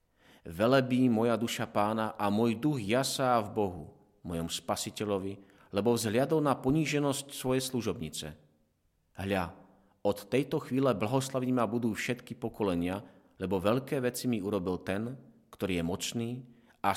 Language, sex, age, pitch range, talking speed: Slovak, male, 40-59, 95-130 Hz, 130 wpm